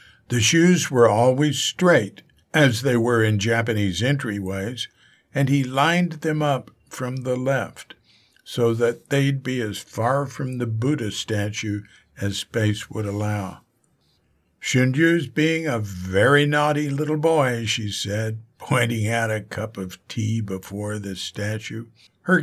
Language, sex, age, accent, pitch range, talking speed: English, male, 60-79, American, 110-140 Hz, 140 wpm